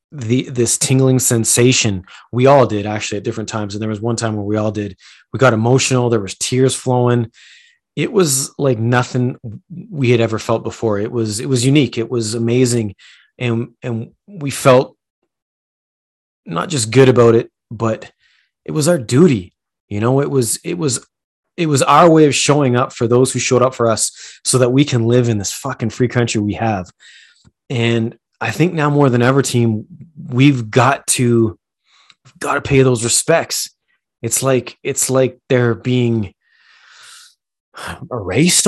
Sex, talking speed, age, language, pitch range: male, 175 wpm, 30-49, English, 115-135 Hz